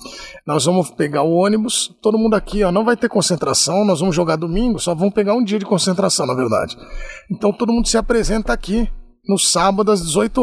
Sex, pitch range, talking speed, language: male, 200-255 Hz, 205 wpm, Portuguese